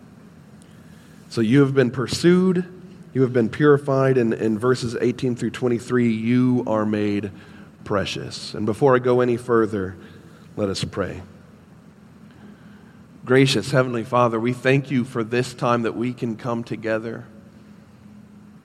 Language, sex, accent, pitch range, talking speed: English, male, American, 115-135 Hz, 135 wpm